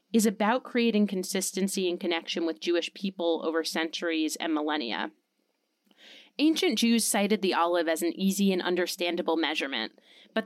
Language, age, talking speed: English, 20-39, 145 wpm